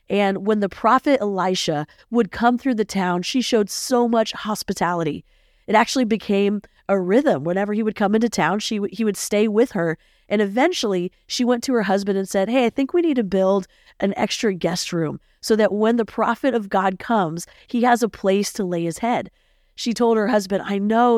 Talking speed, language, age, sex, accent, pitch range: 210 wpm, English, 40-59, female, American, 195-240 Hz